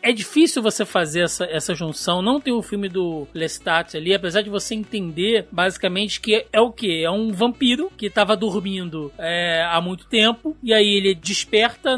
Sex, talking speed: male, 190 wpm